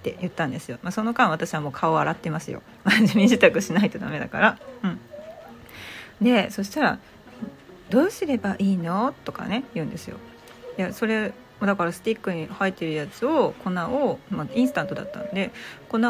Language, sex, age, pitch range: Japanese, female, 40-59, 175-250 Hz